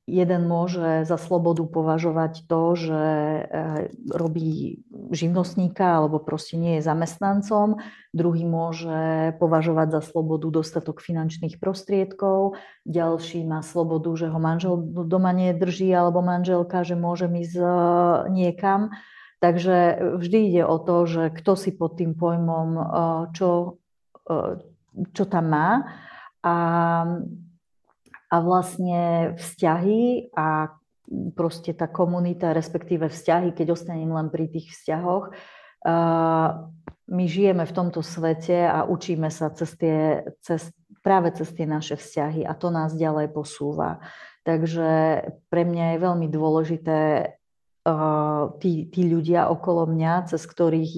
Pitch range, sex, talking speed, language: 160-175 Hz, female, 120 wpm, Slovak